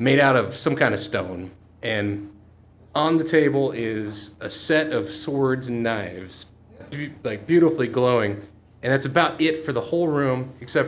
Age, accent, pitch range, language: 30-49, American, 105-150 Hz, English